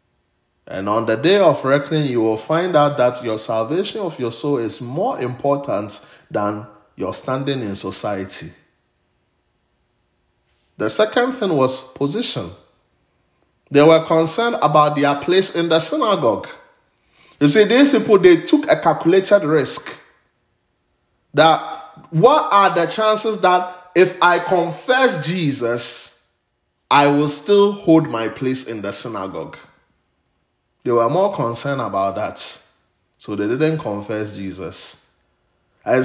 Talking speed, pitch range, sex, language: 130 wpm, 120-180 Hz, male, English